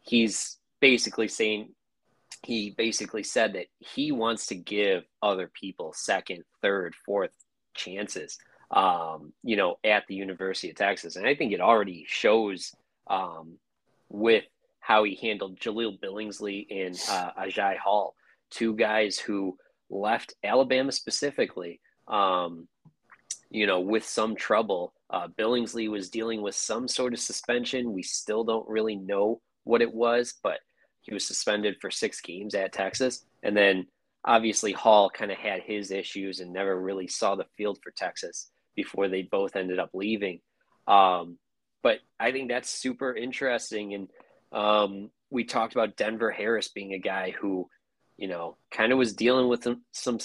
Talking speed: 155 wpm